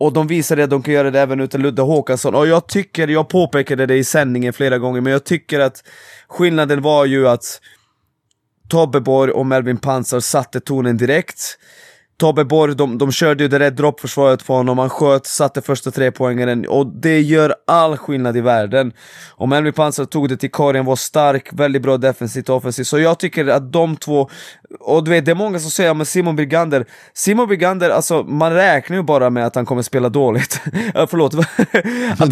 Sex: male